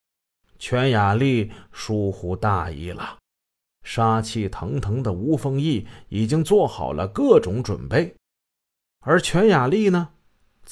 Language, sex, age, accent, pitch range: Chinese, male, 30-49, native, 105-150 Hz